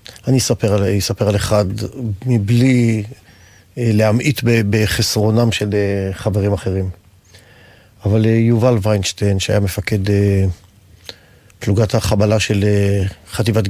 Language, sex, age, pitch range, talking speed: Hebrew, male, 40-59, 100-115 Hz, 90 wpm